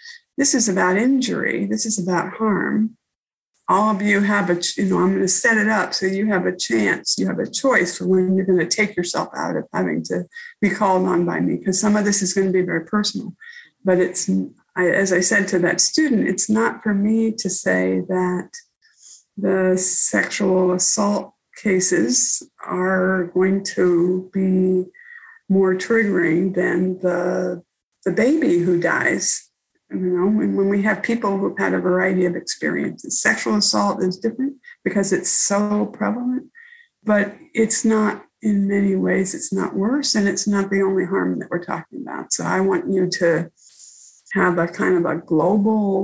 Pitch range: 180-220 Hz